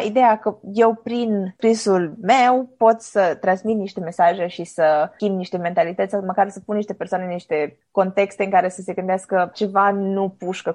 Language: Romanian